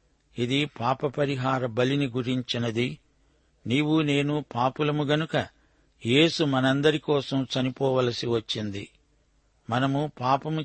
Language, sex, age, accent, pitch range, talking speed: Telugu, male, 60-79, native, 120-140 Hz, 85 wpm